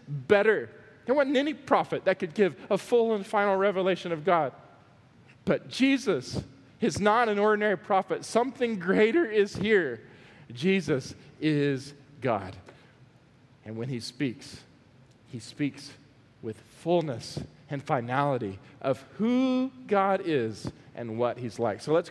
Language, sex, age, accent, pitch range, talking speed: English, male, 40-59, American, 130-190 Hz, 135 wpm